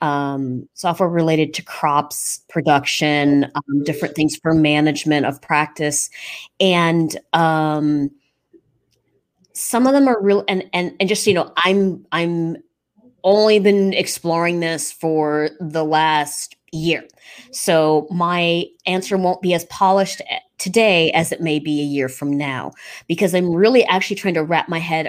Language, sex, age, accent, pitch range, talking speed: English, female, 20-39, American, 150-180 Hz, 145 wpm